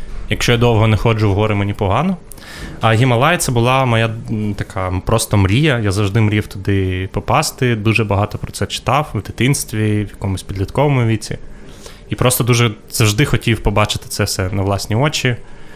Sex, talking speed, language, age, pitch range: male, 170 wpm, Ukrainian, 20-39, 100-120 Hz